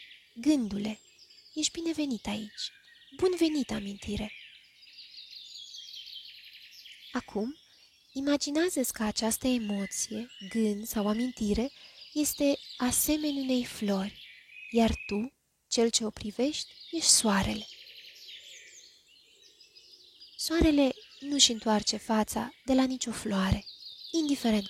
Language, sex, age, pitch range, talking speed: Romanian, female, 20-39, 215-285 Hz, 85 wpm